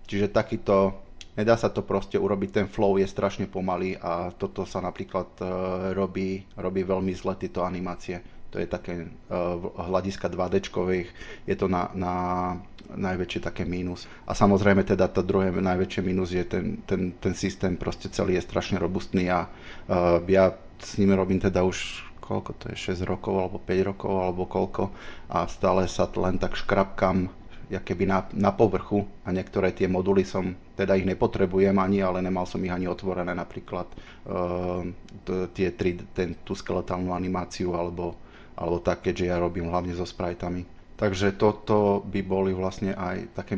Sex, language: male, Slovak